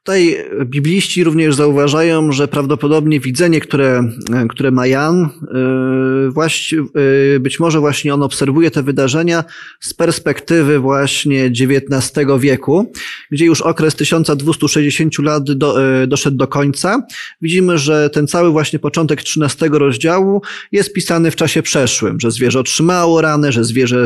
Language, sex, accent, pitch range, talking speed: Polish, male, native, 135-165 Hz, 125 wpm